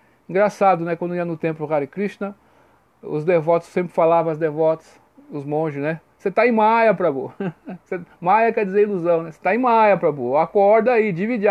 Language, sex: Portuguese, male